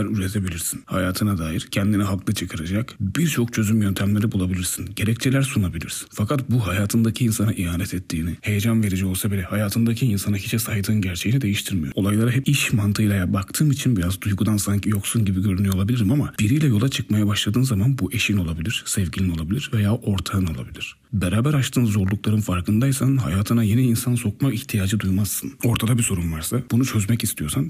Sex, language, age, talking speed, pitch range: male, Turkish, 40-59, 160 wpm, 95-115 Hz